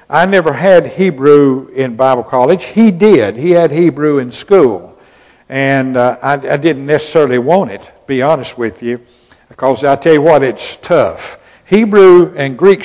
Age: 60-79